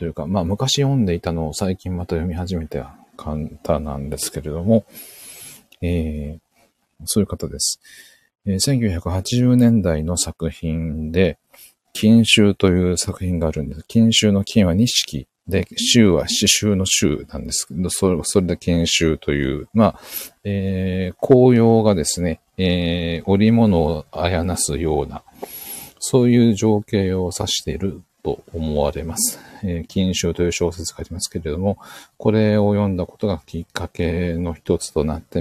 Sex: male